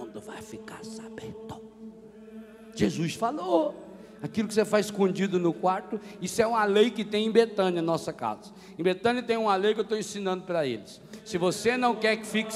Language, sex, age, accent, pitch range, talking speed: Portuguese, male, 50-69, Brazilian, 195-250 Hz, 185 wpm